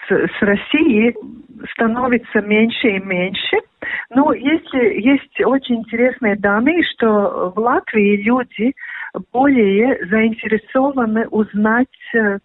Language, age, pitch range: Russian, 40-59, 200-245 Hz